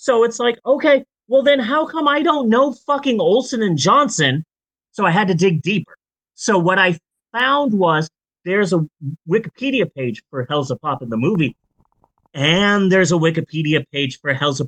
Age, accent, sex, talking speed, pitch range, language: 30-49, American, male, 185 wpm, 160-235 Hz, English